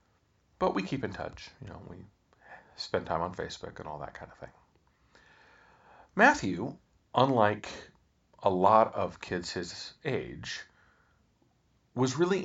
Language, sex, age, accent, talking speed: English, male, 40-59, American, 135 wpm